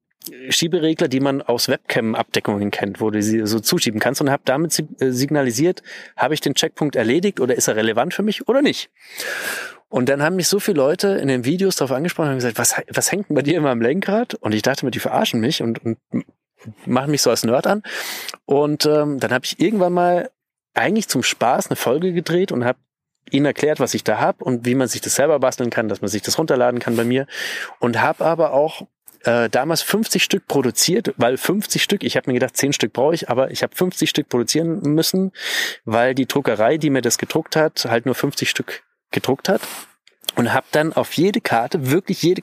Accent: German